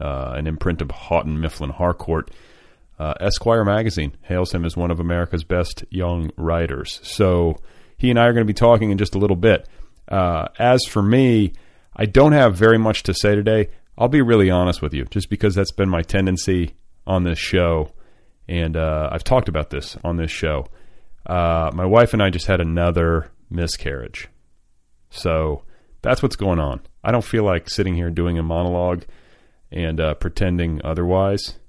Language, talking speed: English, 180 wpm